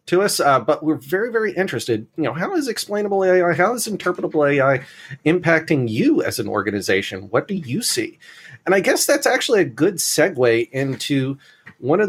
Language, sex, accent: English, male, American